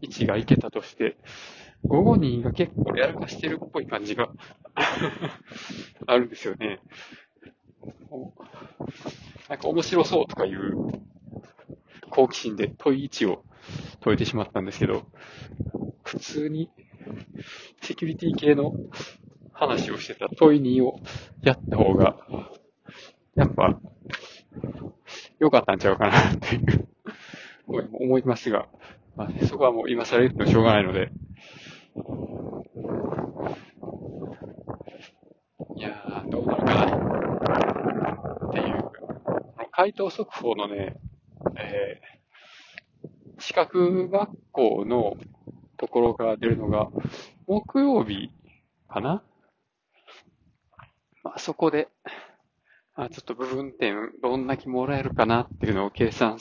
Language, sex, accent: Japanese, male, native